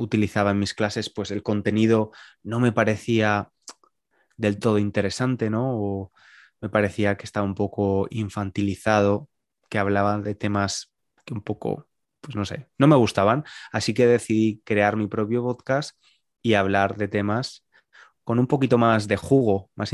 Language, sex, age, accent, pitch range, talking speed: Spanish, male, 20-39, Spanish, 100-115 Hz, 160 wpm